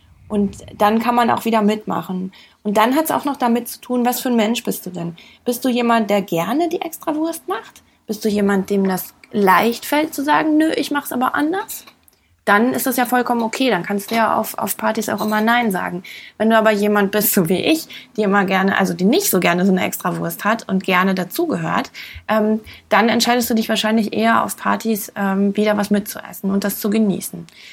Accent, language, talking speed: German, German, 225 wpm